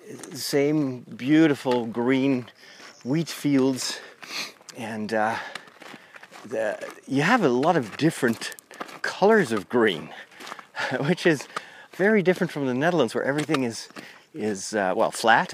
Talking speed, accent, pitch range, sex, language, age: 120 wpm, American, 125-155 Hz, male, English, 40-59